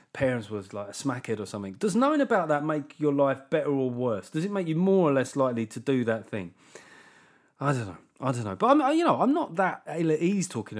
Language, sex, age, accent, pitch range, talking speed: English, male, 30-49, British, 115-165 Hz, 260 wpm